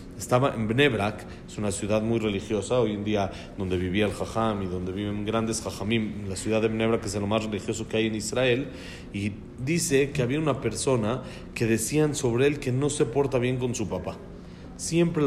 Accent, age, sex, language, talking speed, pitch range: Mexican, 40-59, male, Spanish, 200 wpm, 105-145 Hz